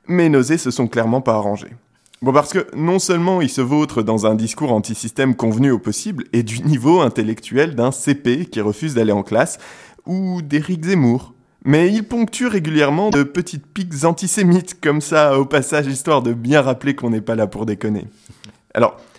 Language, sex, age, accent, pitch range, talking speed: French, male, 20-39, French, 120-165 Hz, 185 wpm